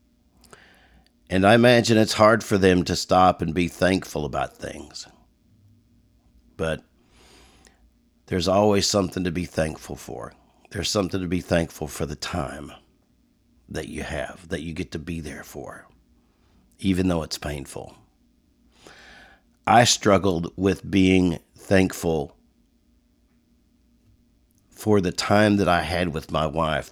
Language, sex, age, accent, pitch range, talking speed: English, male, 50-69, American, 80-100 Hz, 130 wpm